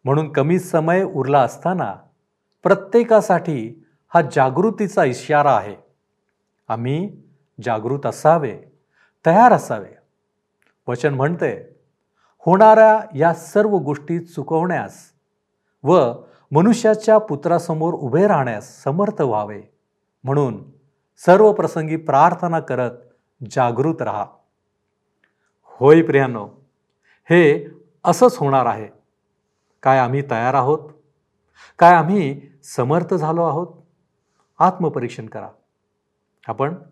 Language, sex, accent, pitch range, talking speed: Marathi, male, native, 135-175 Hz, 85 wpm